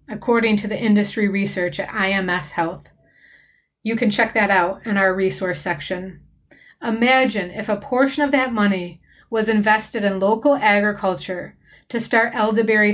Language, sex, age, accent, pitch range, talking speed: English, female, 30-49, American, 190-230 Hz, 150 wpm